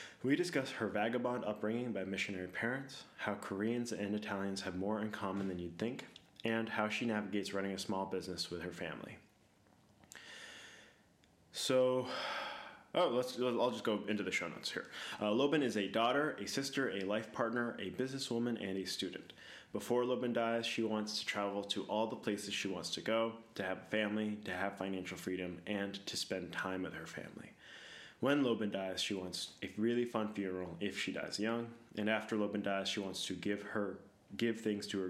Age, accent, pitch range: 20-39, American, 95-115 Hz